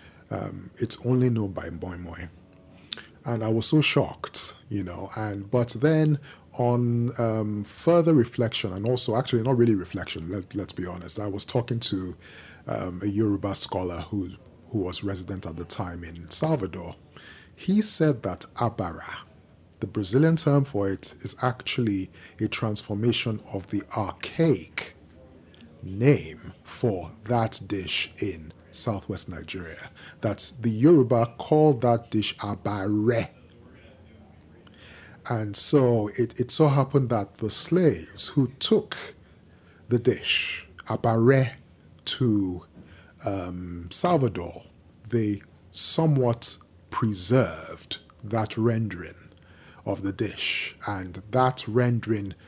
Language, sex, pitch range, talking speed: English, male, 90-120 Hz, 120 wpm